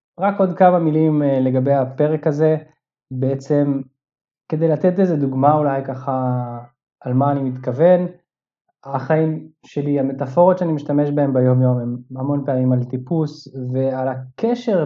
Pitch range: 130-150 Hz